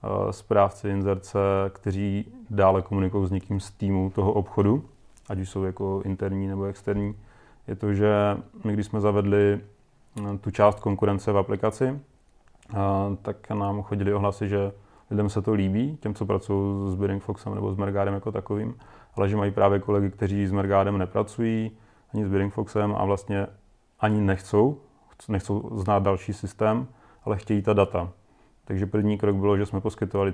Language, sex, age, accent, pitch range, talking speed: Czech, male, 30-49, native, 95-105 Hz, 160 wpm